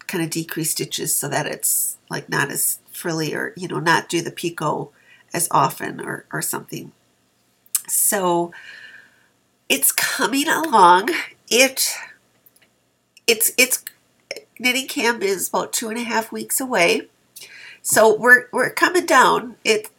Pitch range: 170-225 Hz